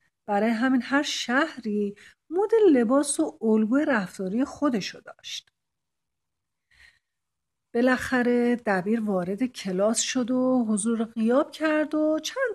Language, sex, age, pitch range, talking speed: Persian, female, 50-69, 210-285 Hz, 105 wpm